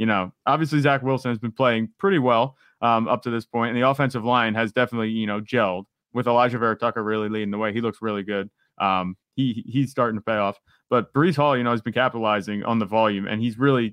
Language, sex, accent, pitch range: English, male, American, 110-130 Hz